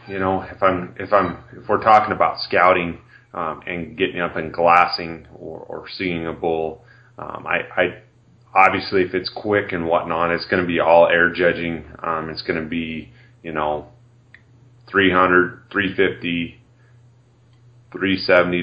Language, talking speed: English, 155 wpm